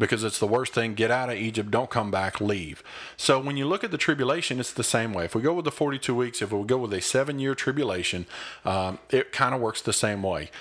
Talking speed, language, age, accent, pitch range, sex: 265 wpm, English, 40-59, American, 100-130 Hz, male